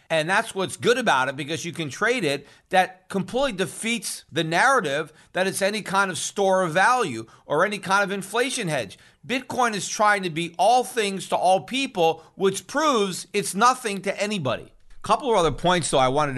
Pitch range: 130-185 Hz